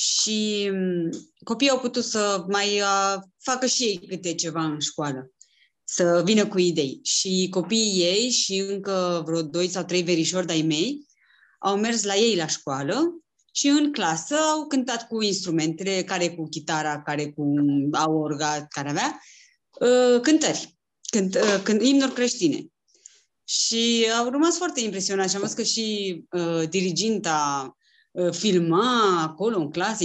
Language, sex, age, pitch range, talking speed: Romanian, female, 20-39, 170-225 Hz, 150 wpm